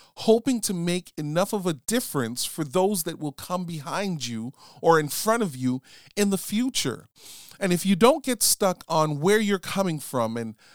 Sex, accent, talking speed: male, American, 190 wpm